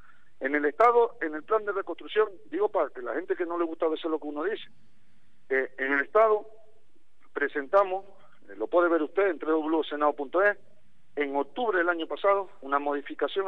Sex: male